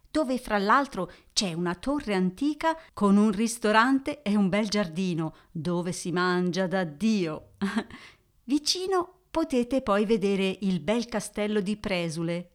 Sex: female